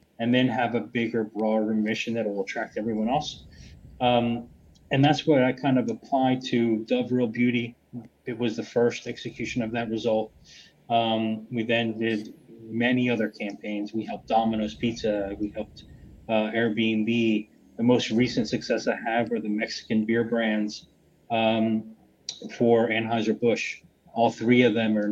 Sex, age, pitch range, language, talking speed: male, 30-49, 110-120 Hz, English, 160 wpm